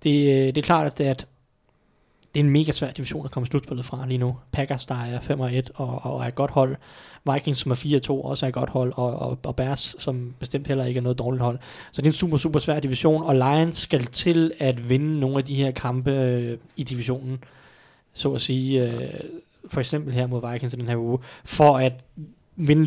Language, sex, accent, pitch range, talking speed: Danish, male, native, 130-150 Hz, 225 wpm